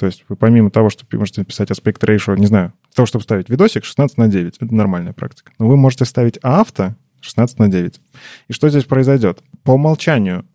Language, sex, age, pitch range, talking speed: Russian, male, 20-39, 105-140 Hz, 210 wpm